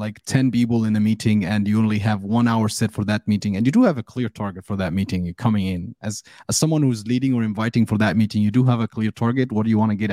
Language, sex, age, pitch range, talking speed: English, male, 30-49, 110-130 Hz, 310 wpm